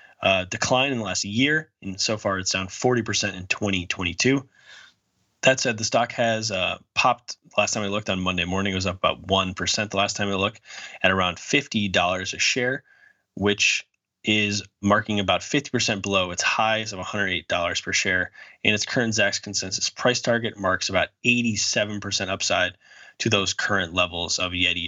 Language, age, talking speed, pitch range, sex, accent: English, 20-39, 175 wpm, 95-115 Hz, male, American